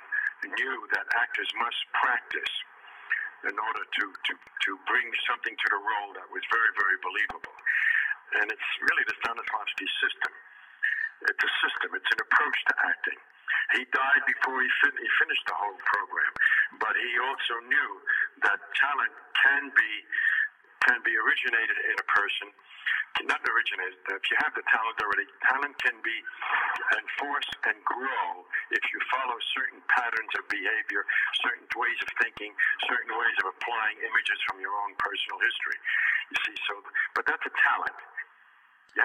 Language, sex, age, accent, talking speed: English, male, 60-79, American, 155 wpm